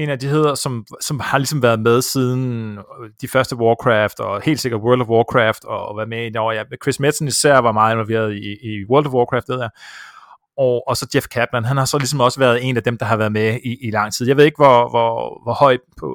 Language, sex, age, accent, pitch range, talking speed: Danish, male, 30-49, native, 120-150 Hz, 260 wpm